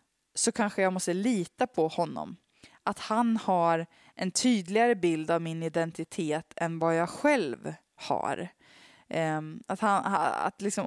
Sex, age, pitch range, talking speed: female, 20-39, 170-215 Hz, 140 wpm